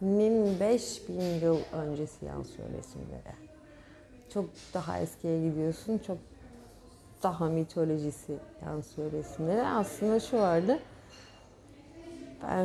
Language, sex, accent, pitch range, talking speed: Turkish, female, native, 170-285 Hz, 90 wpm